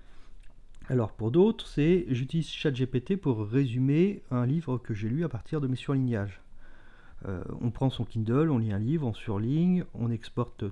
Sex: male